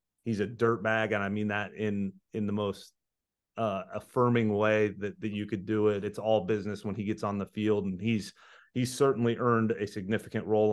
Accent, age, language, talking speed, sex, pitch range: American, 30-49, English, 205 wpm, male, 100-110 Hz